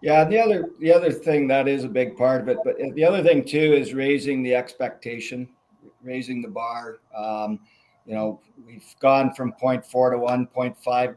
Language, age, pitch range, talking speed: English, 50-69, 120-140 Hz, 190 wpm